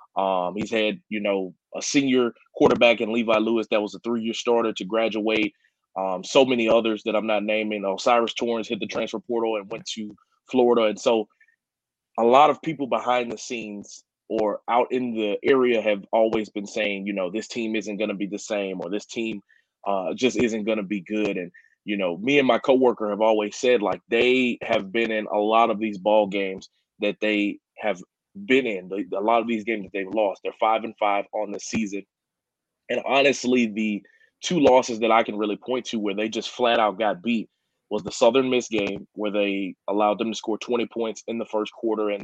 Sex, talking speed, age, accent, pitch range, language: male, 215 wpm, 20-39, American, 105-115 Hz, English